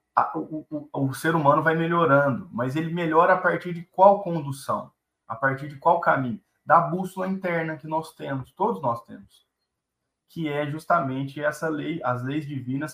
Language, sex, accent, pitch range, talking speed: Portuguese, male, Brazilian, 130-165 Hz, 170 wpm